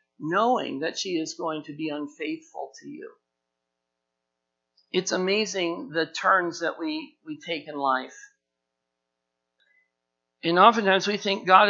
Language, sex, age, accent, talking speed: English, male, 50-69, American, 130 wpm